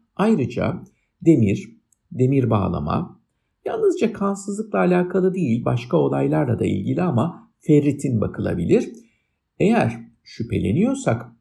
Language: Turkish